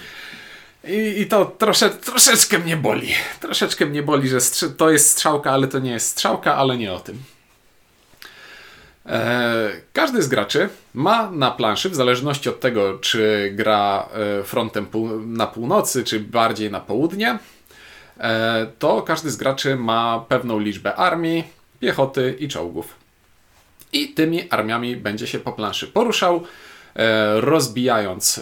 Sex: male